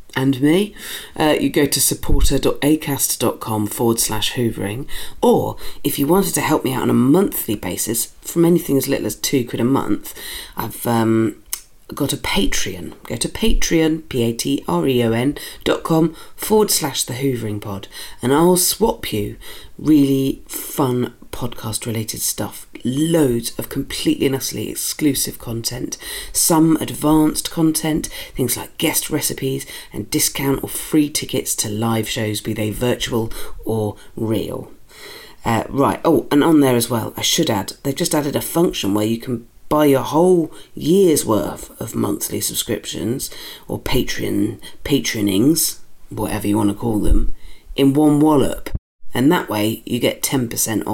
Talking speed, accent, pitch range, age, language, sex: 145 wpm, British, 110-155 Hz, 40-59, English, female